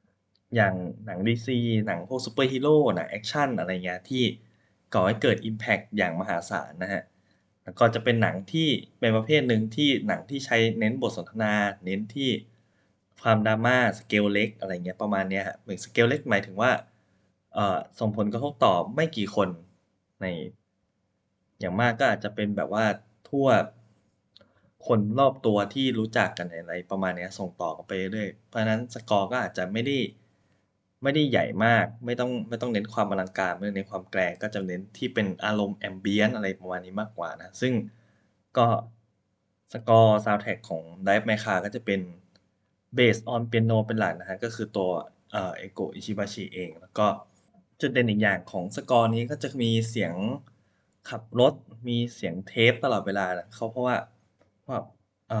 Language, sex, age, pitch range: Thai, male, 20-39, 100-115 Hz